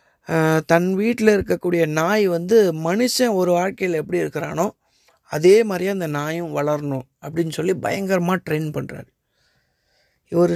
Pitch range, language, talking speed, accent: 155-190 Hz, Tamil, 120 wpm, native